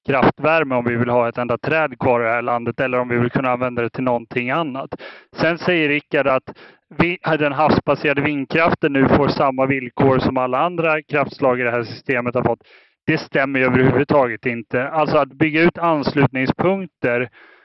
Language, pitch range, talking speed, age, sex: Swedish, 130-155 Hz, 180 wpm, 30-49, male